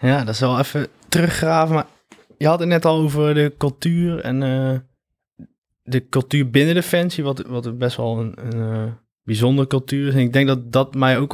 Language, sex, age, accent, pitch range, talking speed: Dutch, male, 20-39, Dutch, 115-135 Hz, 205 wpm